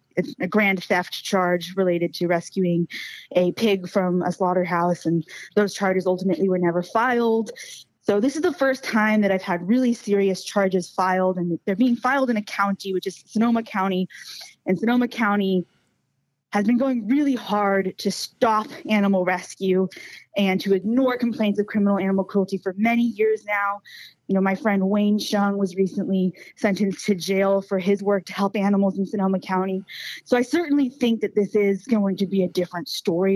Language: English